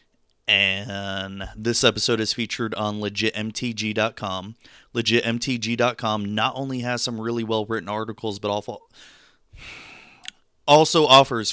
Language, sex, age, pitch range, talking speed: English, male, 20-39, 115-170 Hz, 100 wpm